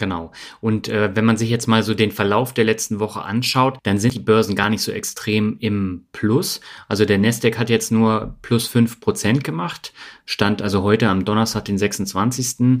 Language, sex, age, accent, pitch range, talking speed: German, male, 30-49, German, 105-120 Hz, 190 wpm